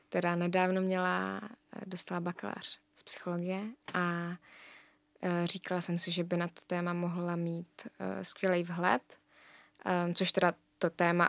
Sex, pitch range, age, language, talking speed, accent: female, 175-195 Hz, 20-39, Czech, 120 wpm, native